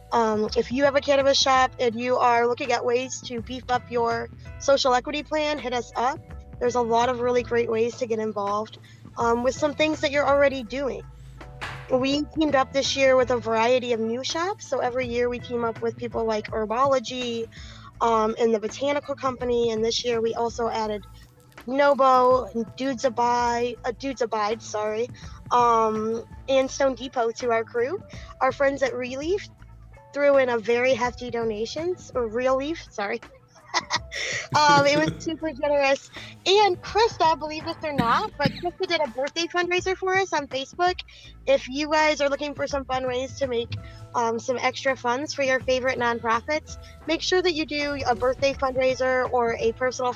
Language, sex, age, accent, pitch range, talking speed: English, female, 20-39, American, 235-285 Hz, 180 wpm